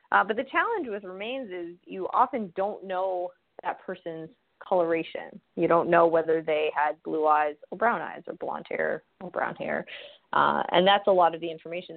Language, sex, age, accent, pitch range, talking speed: English, female, 20-39, American, 165-200 Hz, 195 wpm